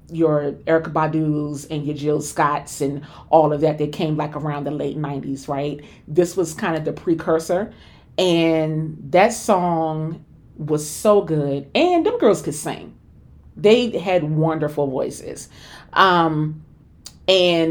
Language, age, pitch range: English, 30-49, 155-205 Hz